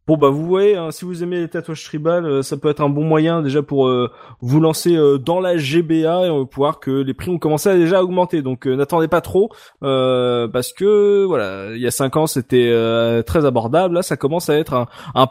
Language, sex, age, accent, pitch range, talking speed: French, male, 20-39, French, 140-190 Hz, 250 wpm